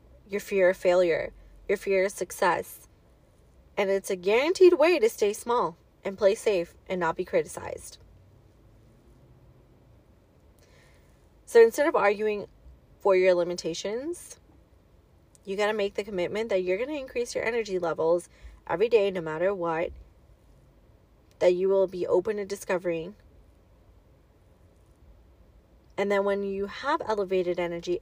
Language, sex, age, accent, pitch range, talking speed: English, female, 30-49, American, 170-225 Hz, 135 wpm